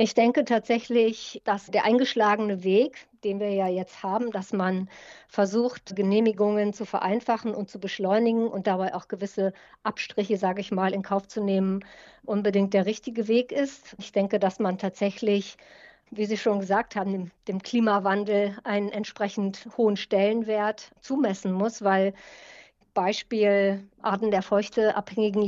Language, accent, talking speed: German, German, 145 wpm